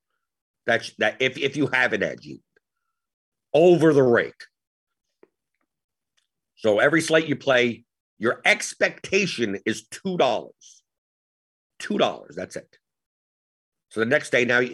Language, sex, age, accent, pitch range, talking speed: English, male, 50-69, American, 115-160 Hz, 115 wpm